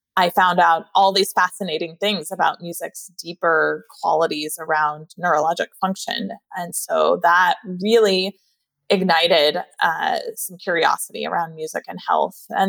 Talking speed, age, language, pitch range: 130 wpm, 20-39, English, 170-205 Hz